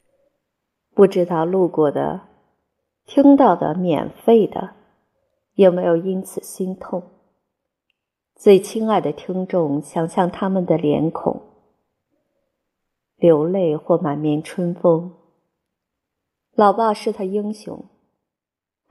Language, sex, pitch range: Chinese, female, 155-195 Hz